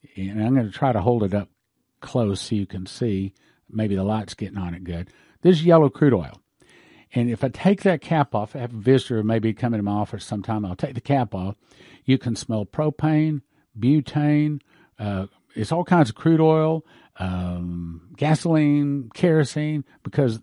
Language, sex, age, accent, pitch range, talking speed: English, male, 50-69, American, 110-150 Hz, 195 wpm